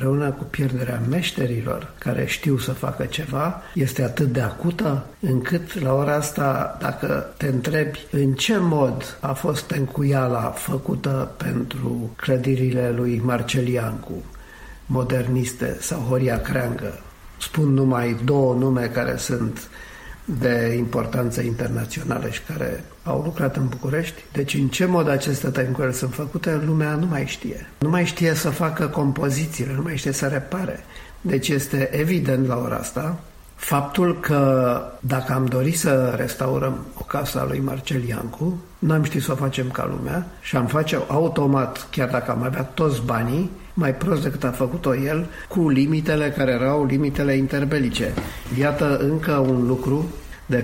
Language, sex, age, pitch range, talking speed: Romanian, male, 50-69, 125-150 Hz, 145 wpm